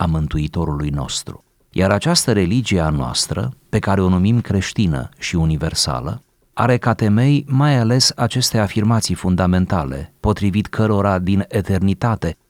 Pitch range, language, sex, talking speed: 90-120 Hz, Romanian, male, 130 wpm